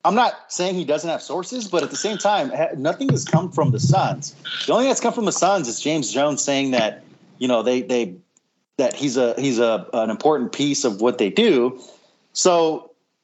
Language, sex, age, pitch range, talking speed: English, male, 30-49, 135-185 Hz, 220 wpm